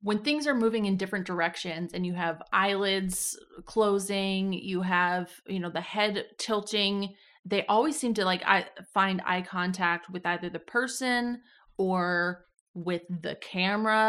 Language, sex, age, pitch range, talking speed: English, female, 20-39, 175-205 Hz, 155 wpm